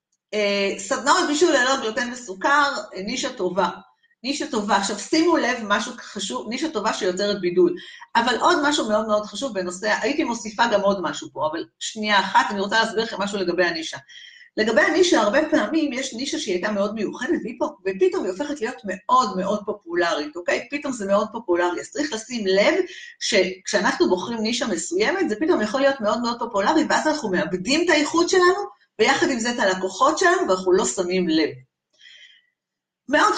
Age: 40-59